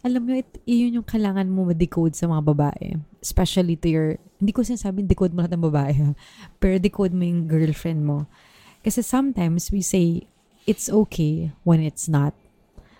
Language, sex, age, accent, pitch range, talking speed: Filipino, female, 20-39, native, 160-195 Hz, 170 wpm